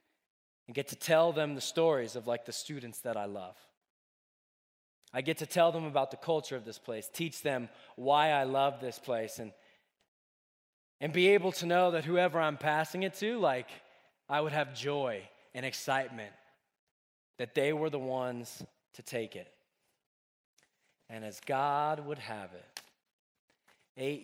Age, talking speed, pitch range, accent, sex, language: 20-39, 165 wpm, 125-165 Hz, American, male, English